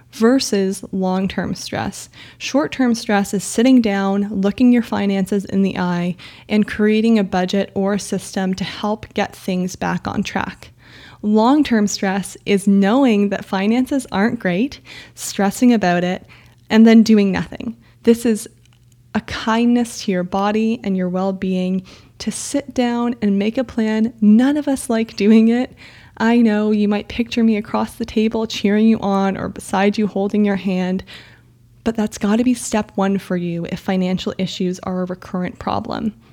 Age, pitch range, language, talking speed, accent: 20-39, 190-230 Hz, English, 165 wpm, American